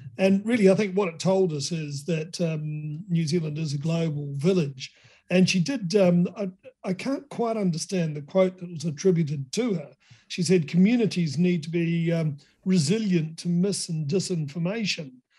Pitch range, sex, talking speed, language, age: 160-190 Hz, male, 175 wpm, English, 50-69